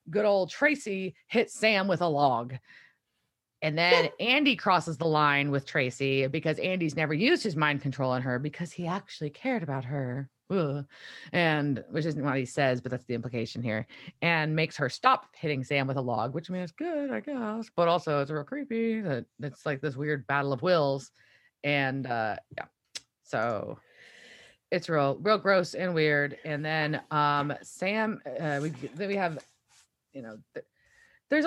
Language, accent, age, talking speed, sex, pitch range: English, American, 30-49, 175 wpm, female, 145-215 Hz